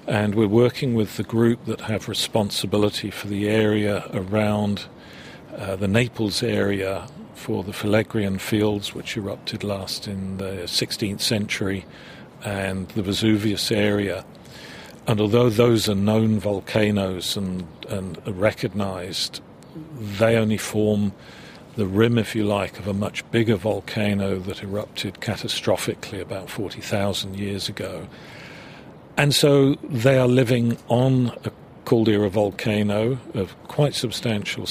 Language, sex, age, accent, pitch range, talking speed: English, male, 50-69, British, 100-115 Hz, 130 wpm